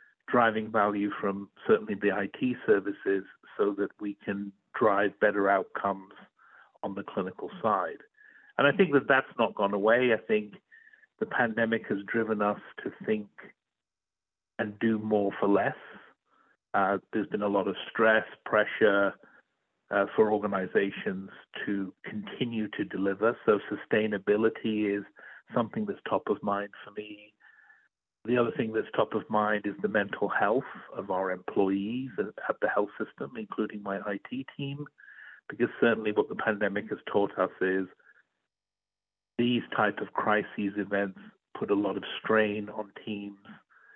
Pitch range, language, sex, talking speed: 100-115 Hz, English, male, 145 wpm